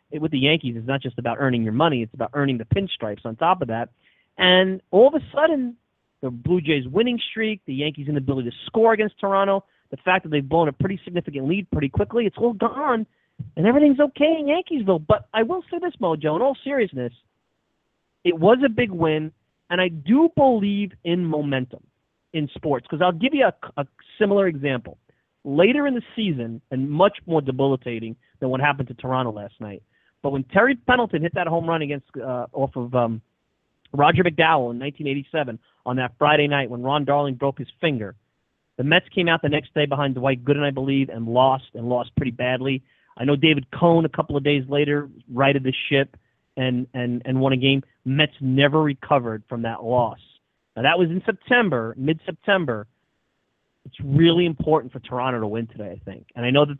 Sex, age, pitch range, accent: male, 30-49, 130-175 Hz, American